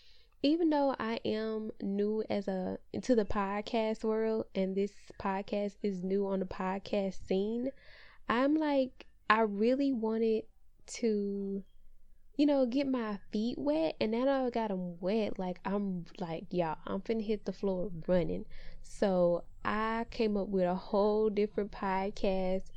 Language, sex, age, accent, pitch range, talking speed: English, female, 10-29, American, 180-220 Hz, 155 wpm